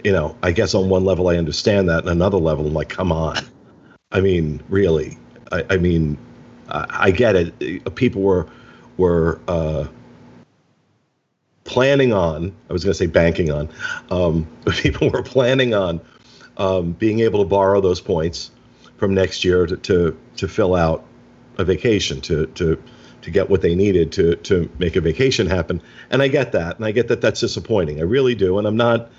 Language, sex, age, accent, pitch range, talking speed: English, male, 50-69, American, 90-125 Hz, 190 wpm